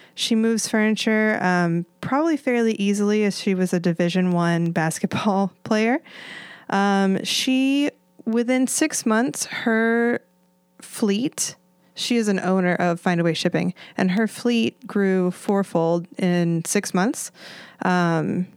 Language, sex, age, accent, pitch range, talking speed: English, female, 20-39, American, 180-215 Hz, 125 wpm